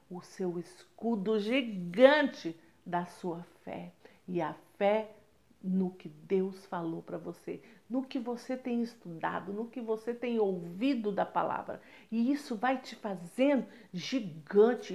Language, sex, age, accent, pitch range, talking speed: Portuguese, female, 50-69, Brazilian, 195-255 Hz, 135 wpm